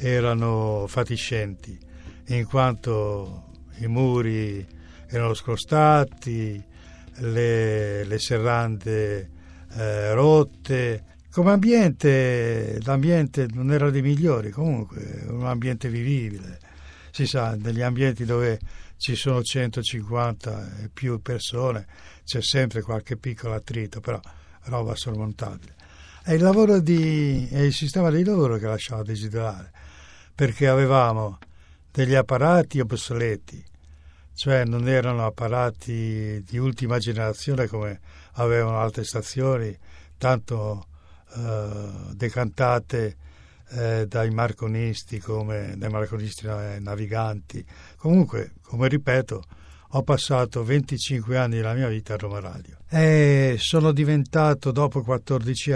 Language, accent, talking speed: Italian, native, 105 wpm